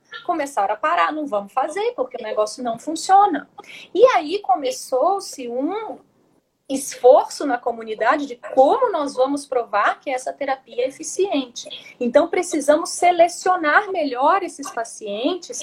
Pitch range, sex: 245-360 Hz, female